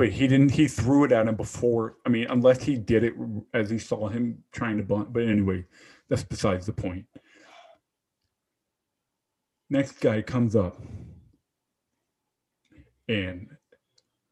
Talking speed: 140 wpm